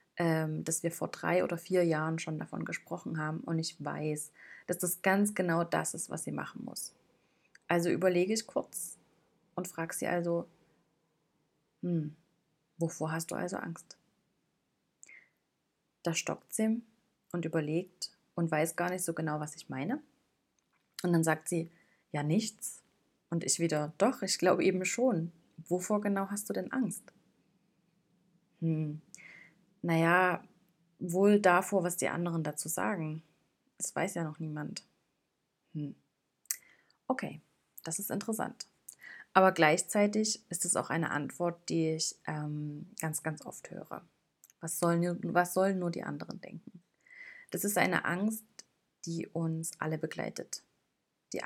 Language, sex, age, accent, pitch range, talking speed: German, female, 30-49, German, 160-190 Hz, 140 wpm